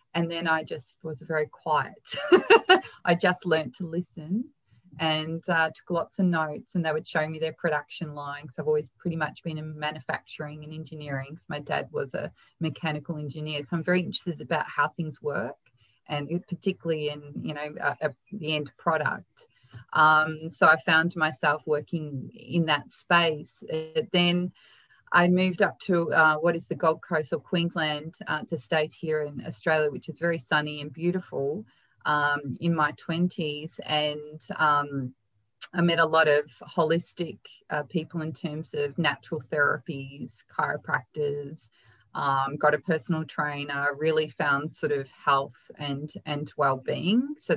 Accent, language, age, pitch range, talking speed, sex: Australian, English, 30-49, 145-170 Hz, 165 wpm, female